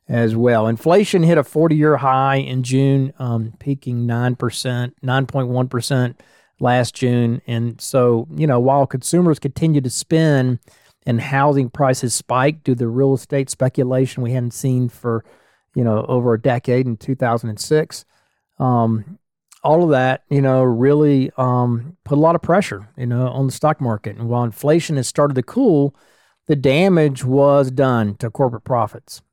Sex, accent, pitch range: male, American, 120-140 Hz